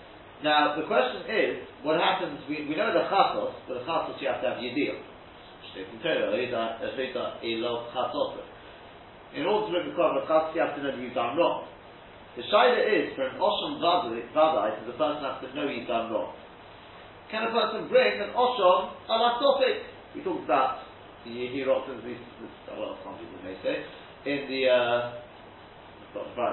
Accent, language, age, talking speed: British, English, 40-59, 160 wpm